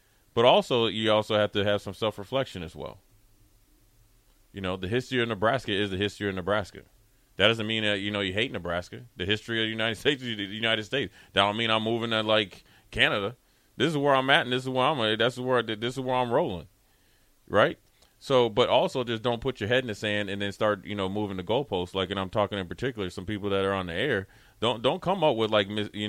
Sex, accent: male, American